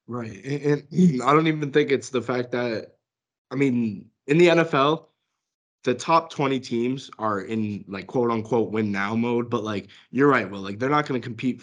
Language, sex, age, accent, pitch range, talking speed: English, male, 20-39, American, 115-145 Hz, 200 wpm